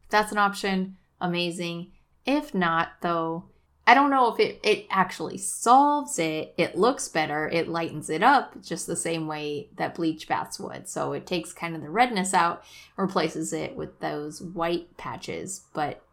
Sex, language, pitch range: female, English, 160-190 Hz